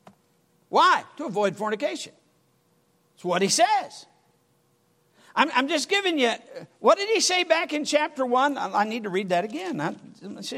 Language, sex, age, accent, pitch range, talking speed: English, male, 50-69, American, 195-280 Hz, 160 wpm